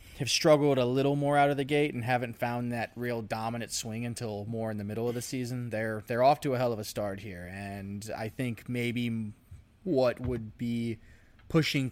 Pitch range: 105-125 Hz